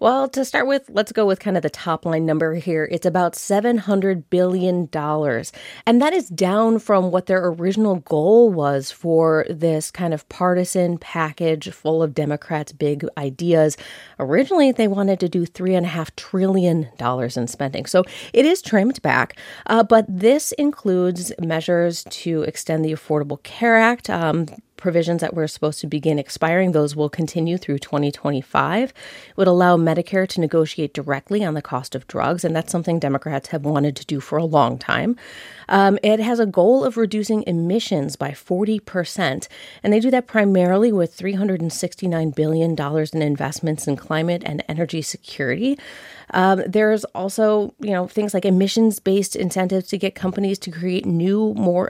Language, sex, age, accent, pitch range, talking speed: English, female, 30-49, American, 155-205 Hz, 165 wpm